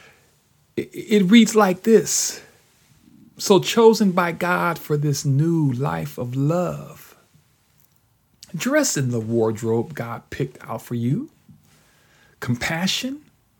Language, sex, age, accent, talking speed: English, male, 40-59, American, 105 wpm